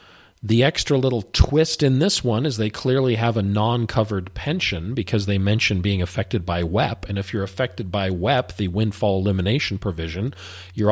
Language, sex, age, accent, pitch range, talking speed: English, male, 40-59, American, 90-115 Hz, 175 wpm